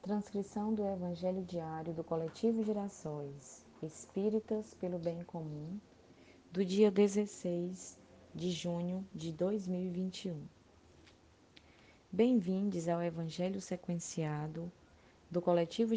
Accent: Brazilian